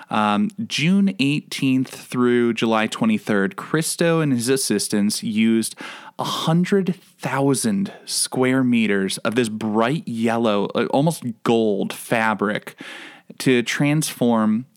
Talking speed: 95 wpm